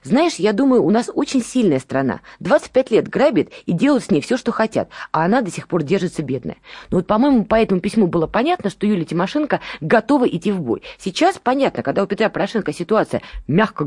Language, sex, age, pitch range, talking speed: Russian, female, 20-39, 160-240 Hz, 210 wpm